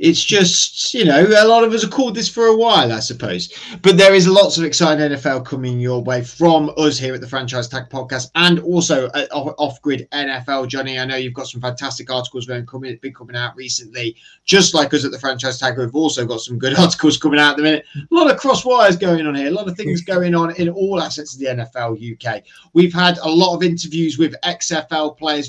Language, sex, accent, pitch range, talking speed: English, male, British, 125-155 Hz, 230 wpm